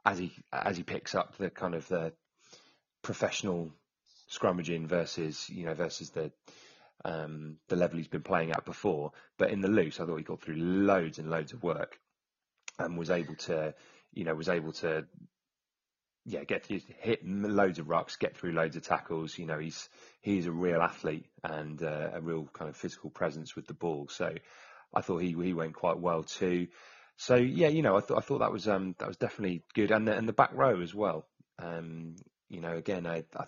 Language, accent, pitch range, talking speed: English, British, 80-95 Hz, 210 wpm